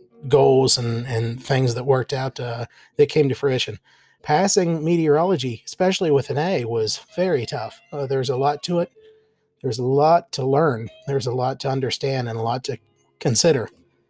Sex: male